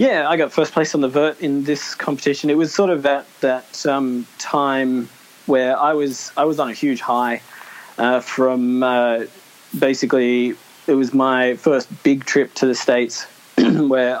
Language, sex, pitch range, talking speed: English, male, 125-145 Hz, 175 wpm